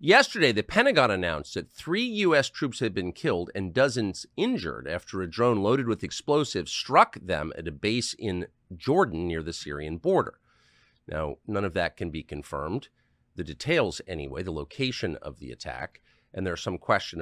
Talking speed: 175 wpm